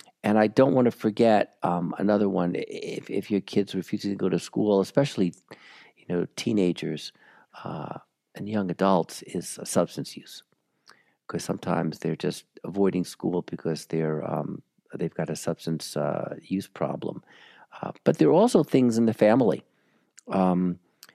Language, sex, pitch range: English, male, 95-130 Hz